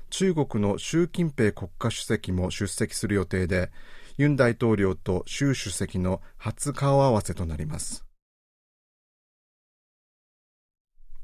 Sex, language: male, Japanese